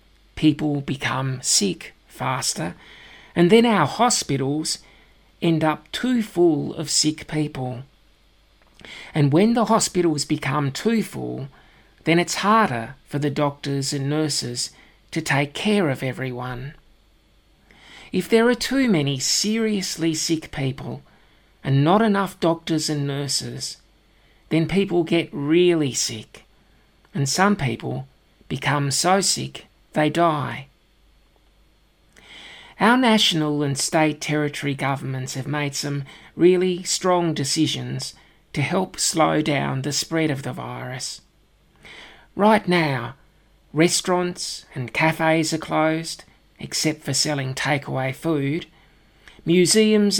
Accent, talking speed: Australian, 115 wpm